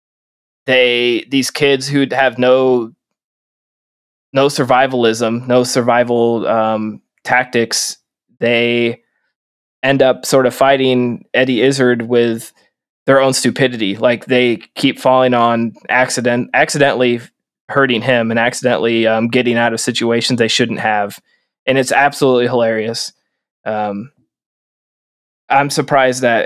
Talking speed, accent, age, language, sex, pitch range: 115 wpm, American, 20-39, English, male, 115-130 Hz